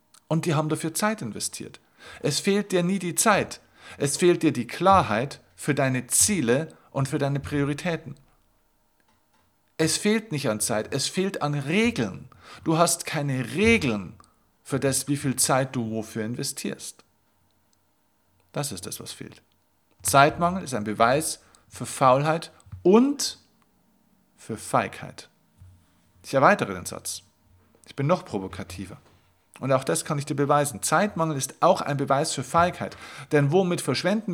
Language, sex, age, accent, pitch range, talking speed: German, male, 50-69, German, 105-160 Hz, 145 wpm